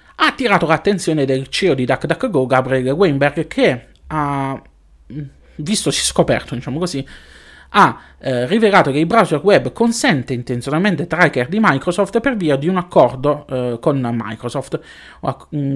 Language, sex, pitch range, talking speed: Italian, male, 130-175 Hz, 140 wpm